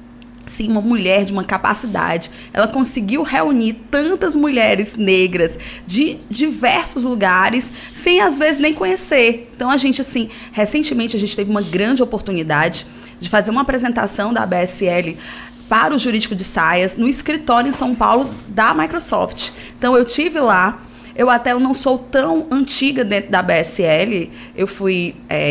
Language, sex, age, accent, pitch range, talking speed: Portuguese, female, 20-39, Brazilian, 195-260 Hz, 155 wpm